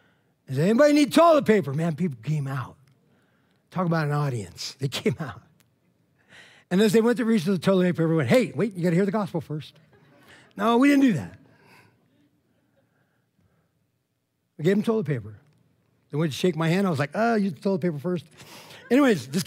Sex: male